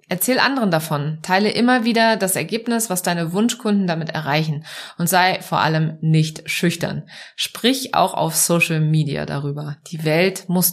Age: 20-39